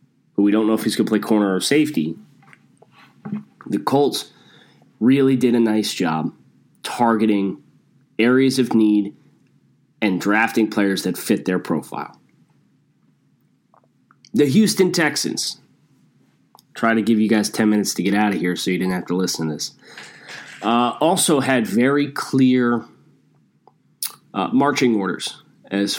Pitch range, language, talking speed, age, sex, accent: 105-140 Hz, English, 140 wpm, 20-39, male, American